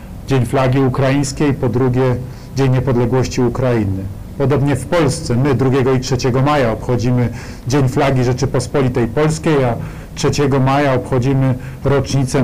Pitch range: 125-140 Hz